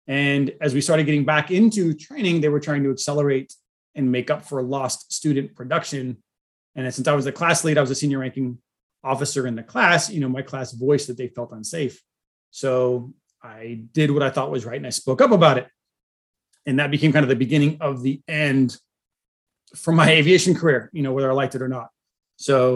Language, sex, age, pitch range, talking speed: English, male, 30-49, 125-150 Hz, 215 wpm